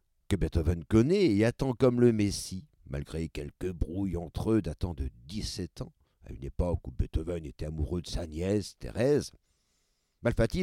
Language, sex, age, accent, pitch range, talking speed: French, male, 50-69, French, 80-110 Hz, 165 wpm